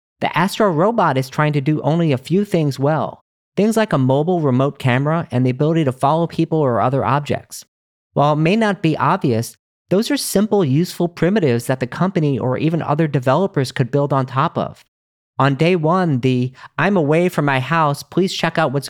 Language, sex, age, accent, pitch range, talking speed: English, male, 40-59, American, 130-170 Hz, 200 wpm